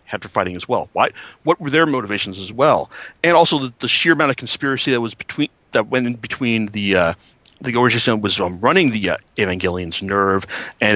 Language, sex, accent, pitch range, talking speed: English, male, American, 105-150 Hz, 210 wpm